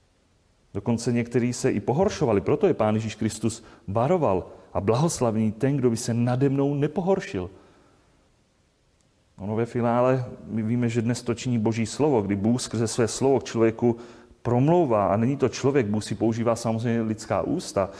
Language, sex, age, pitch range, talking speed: Czech, male, 30-49, 110-135 Hz, 165 wpm